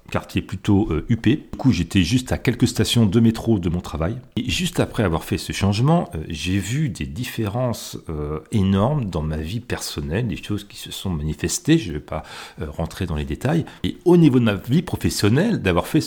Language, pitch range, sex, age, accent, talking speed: French, 85-120 Hz, male, 40-59, French, 215 wpm